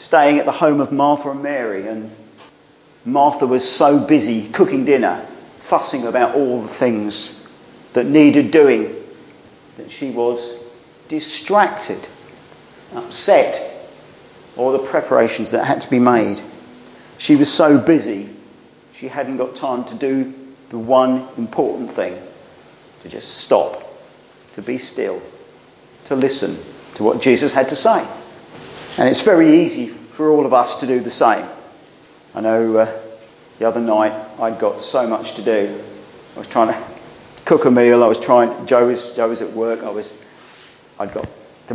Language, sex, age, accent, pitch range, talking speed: English, male, 50-69, British, 115-155 Hz, 160 wpm